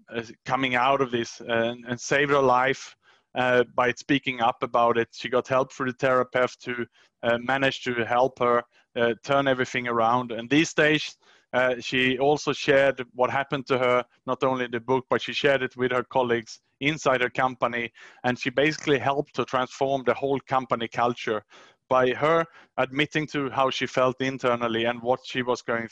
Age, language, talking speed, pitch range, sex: 20-39, English, 180 wpm, 120-135 Hz, male